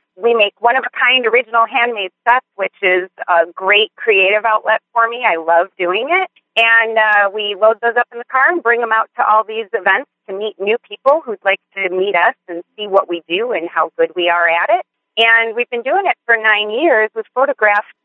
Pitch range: 185-245 Hz